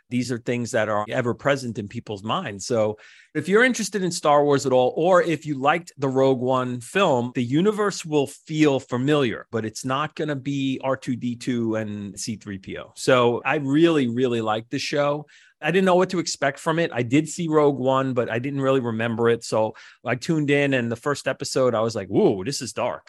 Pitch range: 110-145 Hz